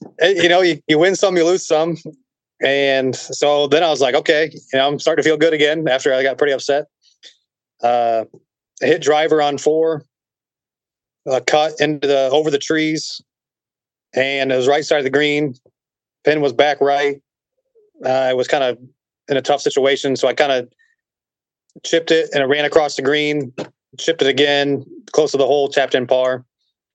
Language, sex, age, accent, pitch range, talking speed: English, male, 30-49, American, 130-150 Hz, 190 wpm